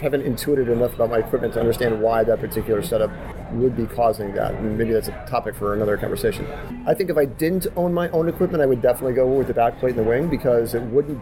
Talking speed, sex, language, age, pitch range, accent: 240 wpm, male, English, 40-59, 120-145 Hz, American